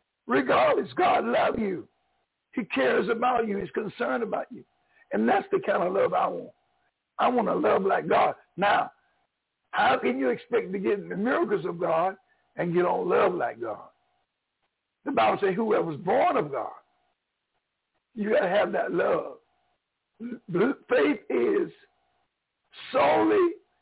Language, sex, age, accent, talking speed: English, male, 60-79, American, 155 wpm